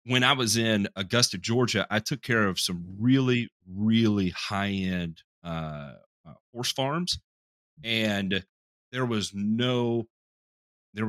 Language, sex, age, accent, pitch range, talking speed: English, male, 40-59, American, 90-120 Hz, 125 wpm